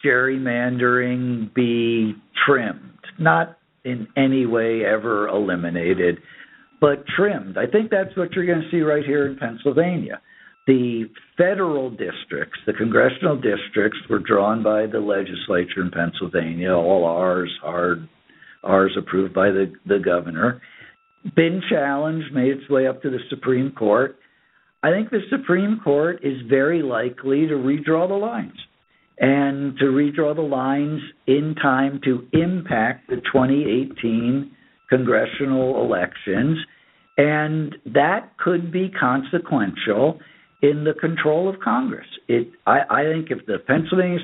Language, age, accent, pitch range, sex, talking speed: English, 60-79, American, 125-160 Hz, male, 130 wpm